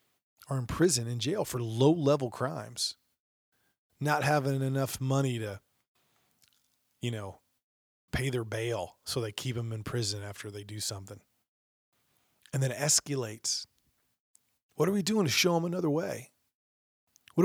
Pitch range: 115-145 Hz